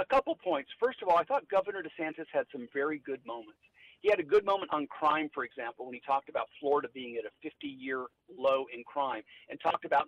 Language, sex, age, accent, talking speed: English, male, 50-69, American, 230 wpm